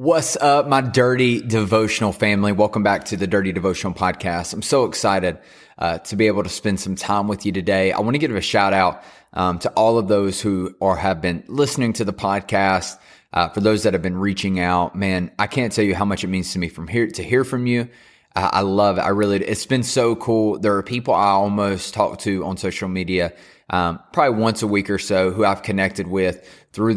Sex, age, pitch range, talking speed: male, 20-39, 95-110 Hz, 230 wpm